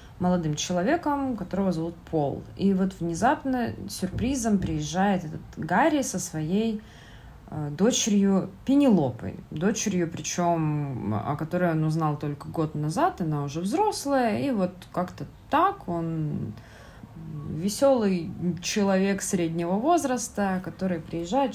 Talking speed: 110 wpm